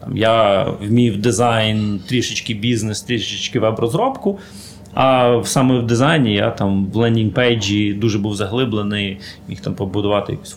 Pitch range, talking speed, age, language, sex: 105-125 Hz, 130 wpm, 30-49, Ukrainian, male